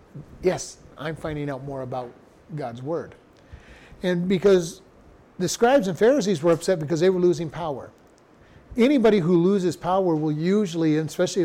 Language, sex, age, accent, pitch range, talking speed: English, male, 40-59, American, 150-180 Hz, 145 wpm